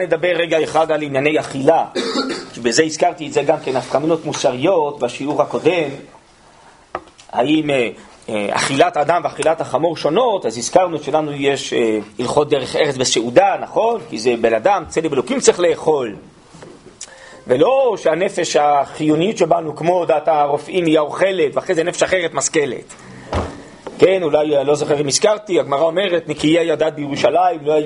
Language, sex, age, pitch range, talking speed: Hebrew, male, 40-59, 140-170 Hz, 140 wpm